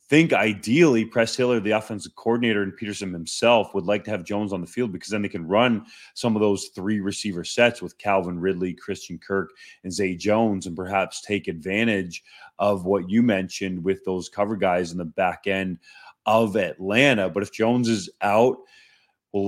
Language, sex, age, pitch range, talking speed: English, male, 30-49, 95-110 Hz, 190 wpm